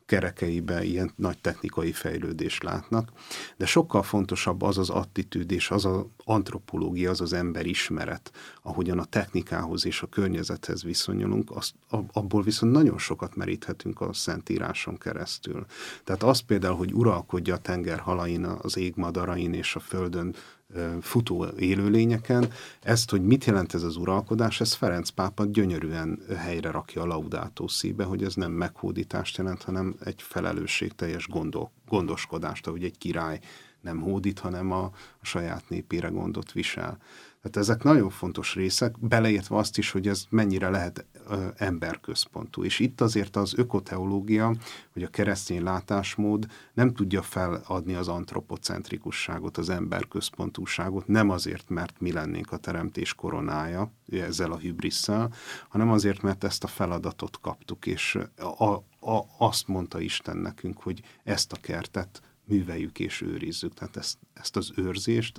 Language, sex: Hungarian, male